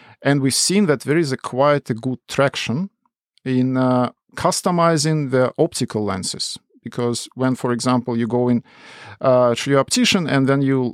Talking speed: 170 wpm